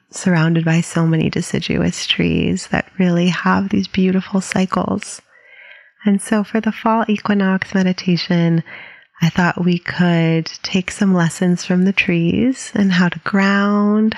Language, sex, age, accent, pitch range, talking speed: English, female, 30-49, American, 175-225 Hz, 140 wpm